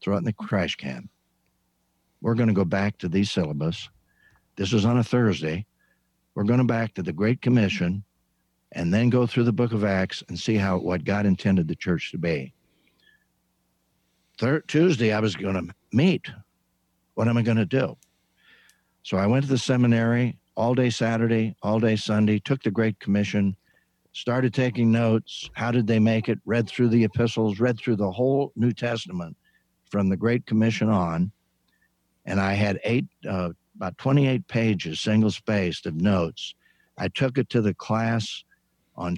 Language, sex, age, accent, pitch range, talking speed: English, male, 60-79, American, 95-120 Hz, 180 wpm